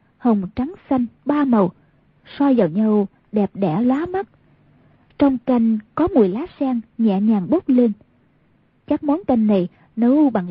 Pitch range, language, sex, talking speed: 210-280 Hz, Vietnamese, female, 160 wpm